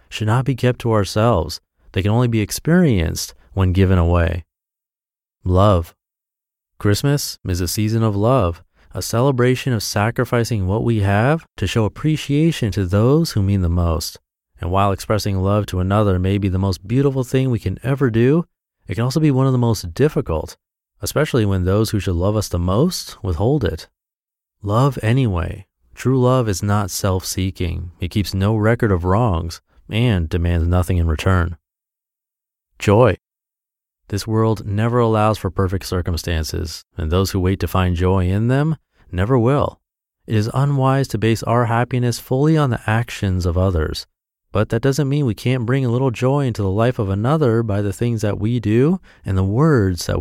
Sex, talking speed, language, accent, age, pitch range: male, 175 wpm, English, American, 30-49, 90-125 Hz